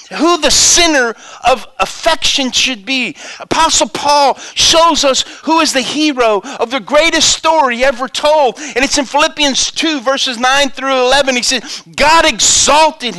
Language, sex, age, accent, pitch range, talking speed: English, male, 50-69, American, 215-290 Hz, 155 wpm